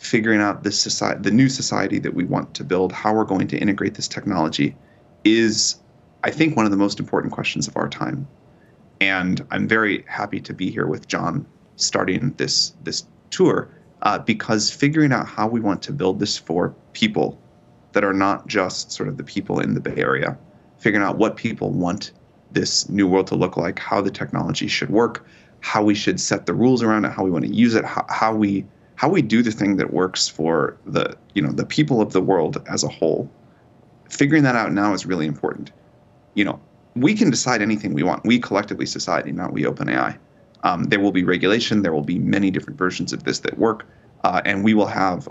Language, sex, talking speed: English, male, 215 wpm